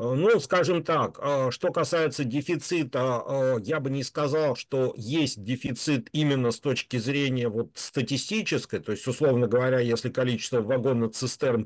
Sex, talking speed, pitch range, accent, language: male, 135 wpm, 120-140 Hz, native, Russian